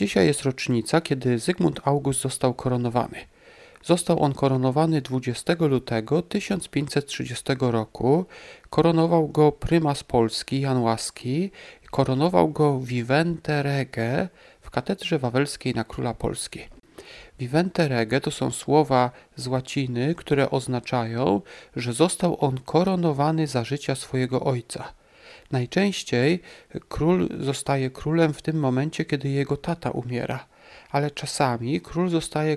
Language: Polish